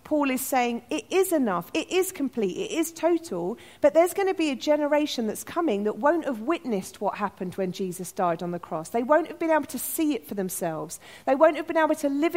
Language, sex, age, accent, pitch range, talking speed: English, female, 40-59, British, 200-310 Hz, 245 wpm